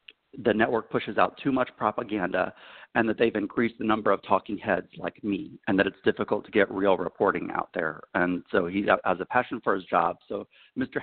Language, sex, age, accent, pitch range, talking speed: English, male, 50-69, American, 105-135 Hz, 210 wpm